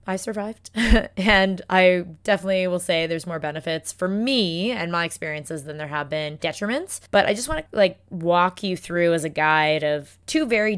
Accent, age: American, 20-39